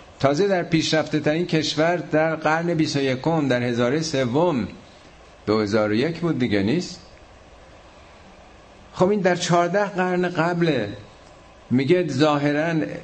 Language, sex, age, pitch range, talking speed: Persian, male, 50-69, 105-145 Hz, 125 wpm